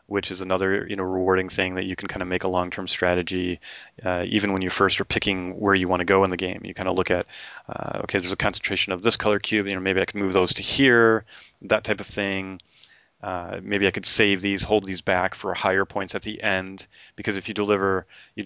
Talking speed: 255 wpm